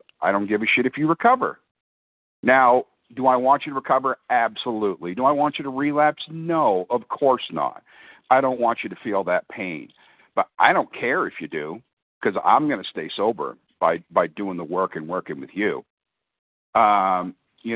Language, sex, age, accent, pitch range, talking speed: English, male, 50-69, American, 105-145 Hz, 195 wpm